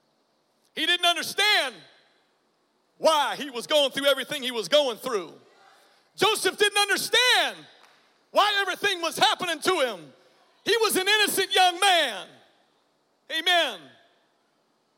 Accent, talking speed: American, 115 wpm